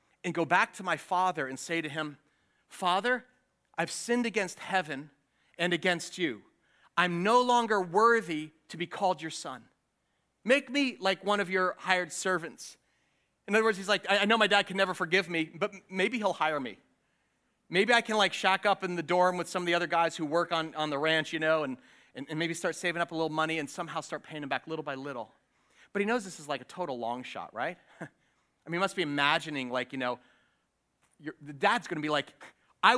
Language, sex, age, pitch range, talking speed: English, male, 40-59, 155-195 Hz, 225 wpm